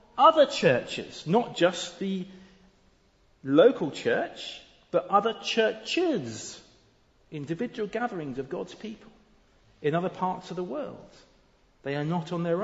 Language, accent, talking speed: English, British, 125 wpm